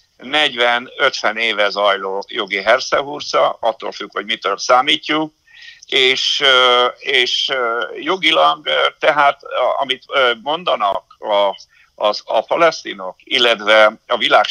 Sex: male